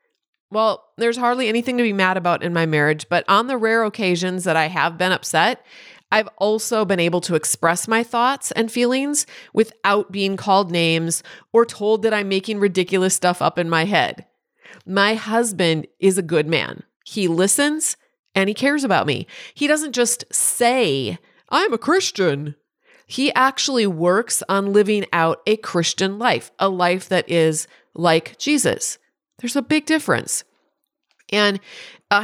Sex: female